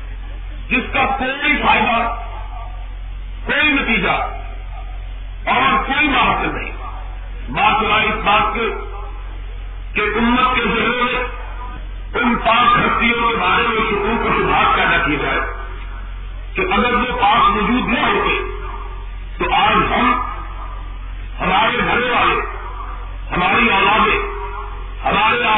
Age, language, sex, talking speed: 50-69, Urdu, female, 105 wpm